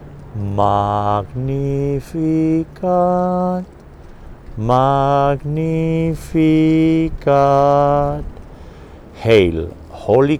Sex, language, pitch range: male, English, 75-115 Hz